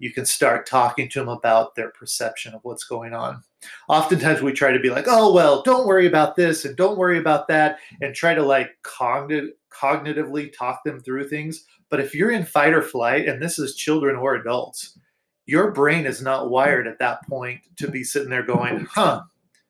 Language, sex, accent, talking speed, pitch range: English, male, American, 200 wpm, 125-160 Hz